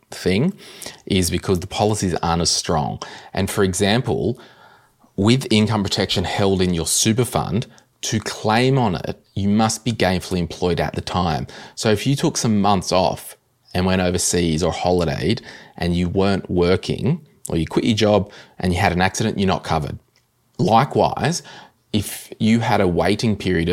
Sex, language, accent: male, English, Australian